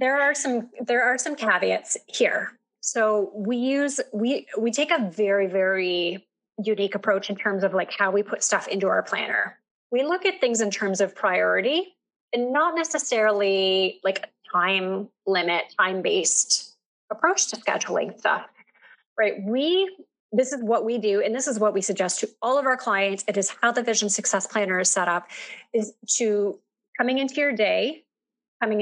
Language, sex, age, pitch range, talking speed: English, female, 30-49, 195-240 Hz, 175 wpm